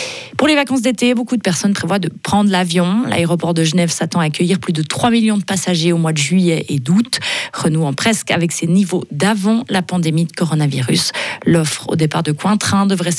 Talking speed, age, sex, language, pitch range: 205 wpm, 30-49, female, French, 160-200 Hz